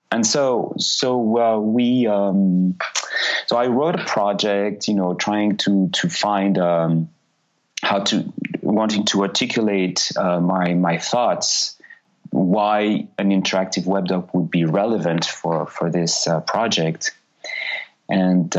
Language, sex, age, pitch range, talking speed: English, male, 30-49, 90-110 Hz, 130 wpm